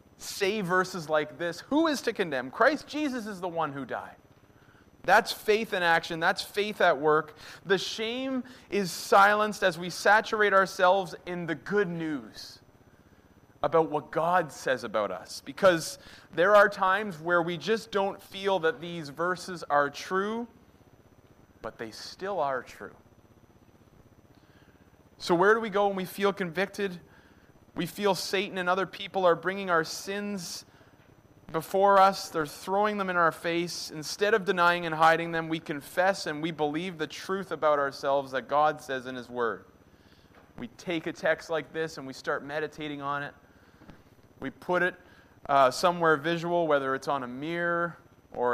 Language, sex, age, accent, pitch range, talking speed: English, male, 30-49, American, 135-190 Hz, 165 wpm